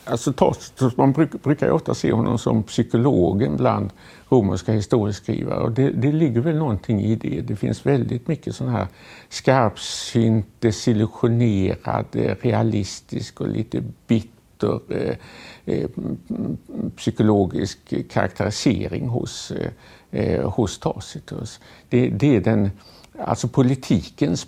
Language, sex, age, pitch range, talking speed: Swedish, male, 60-79, 110-130 Hz, 115 wpm